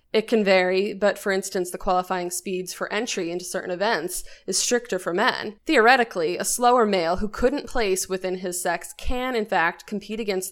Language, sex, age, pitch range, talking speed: English, female, 20-39, 180-220 Hz, 190 wpm